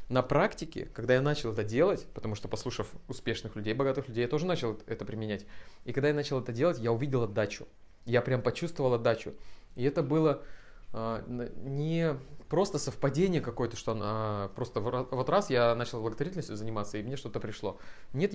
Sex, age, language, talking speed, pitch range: male, 20-39, Russian, 185 wpm, 115-140 Hz